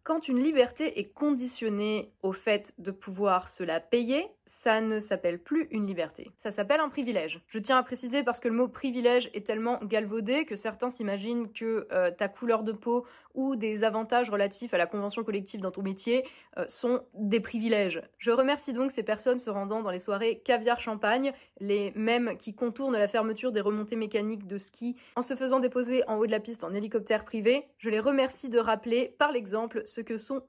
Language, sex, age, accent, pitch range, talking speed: French, female, 20-39, French, 215-265 Hz, 200 wpm